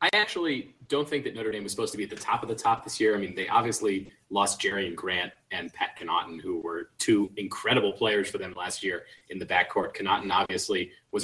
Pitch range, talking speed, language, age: 100-120 Hz, 240 wpm, English, 30-49